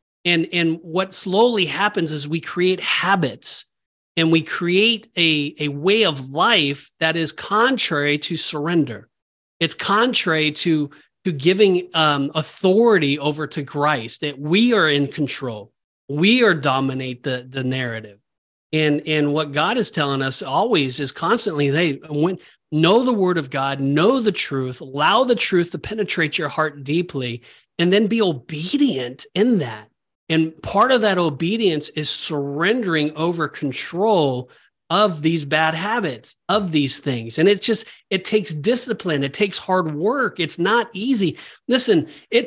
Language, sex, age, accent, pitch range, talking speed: English, male, 40-59, American, 150-215 Hz, 155 wpm